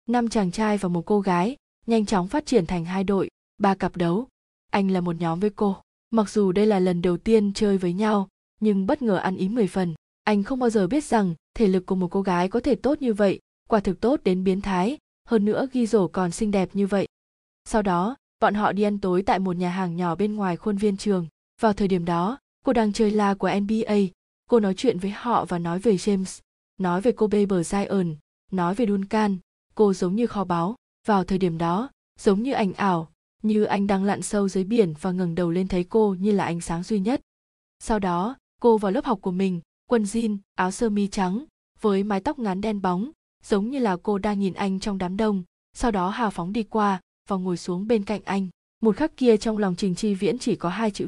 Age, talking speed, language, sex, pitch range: 20-39, 235 wpm, Vietnamese, female, 185-225 Hz